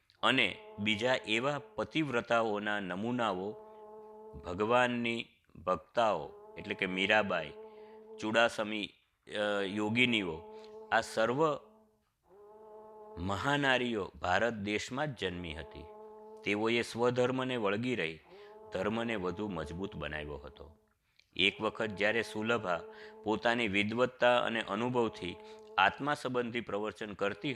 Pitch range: 100-140 Hz